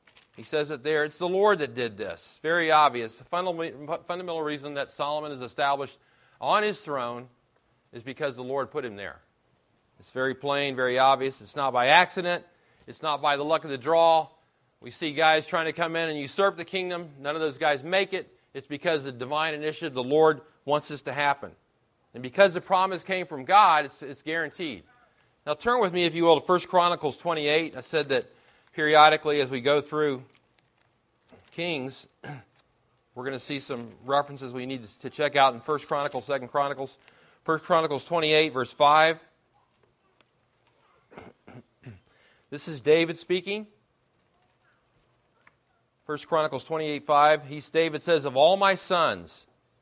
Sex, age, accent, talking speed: male, 40-59, American, 165 wpm